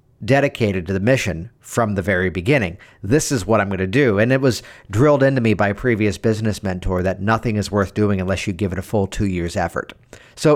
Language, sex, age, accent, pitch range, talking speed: English, male, 50-69, American, 100-130 Hz, 235 wpm